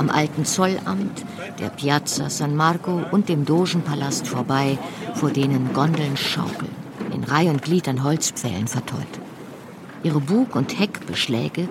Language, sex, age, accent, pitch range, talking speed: German, female, 50-69, German, 145-185 Hz, 130 wpm